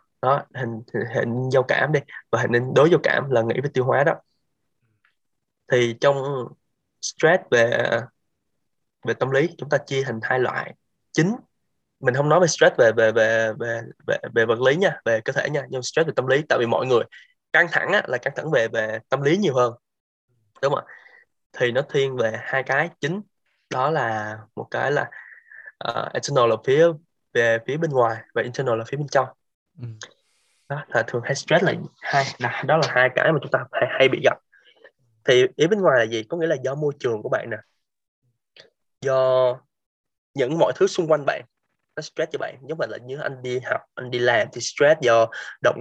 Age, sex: 20-39, male